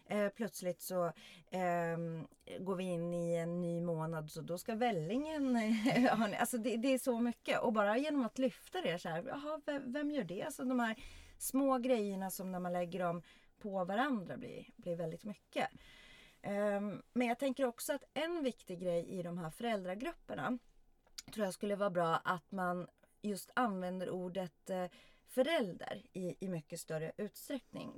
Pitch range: 175-245 Hz